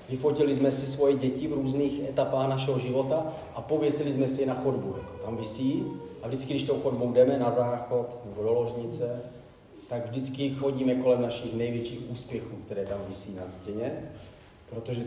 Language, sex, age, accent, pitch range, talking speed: Czech, male, 30-49, native, 115-140 Hz, 175 wpm